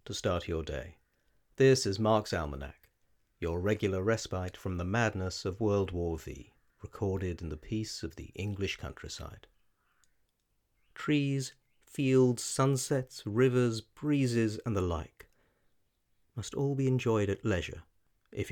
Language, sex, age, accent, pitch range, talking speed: English, male, 50-69, British, 85-115 Hz, 135 wpm